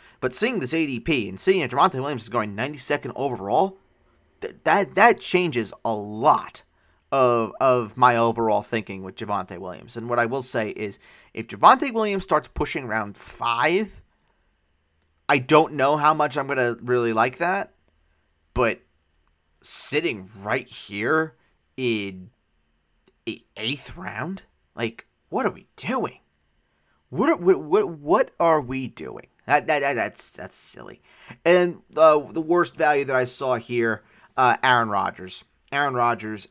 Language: English